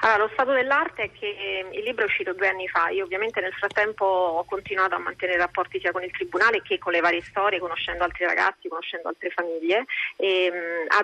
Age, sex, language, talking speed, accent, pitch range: 30-49, female, Italian, 210 wpm, native, 180-220 Hz